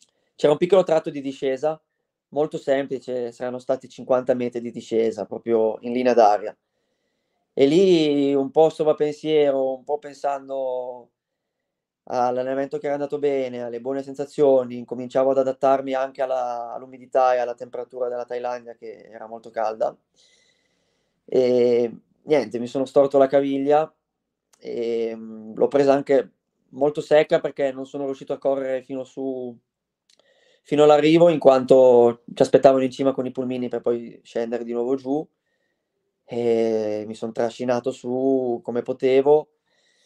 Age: 20-39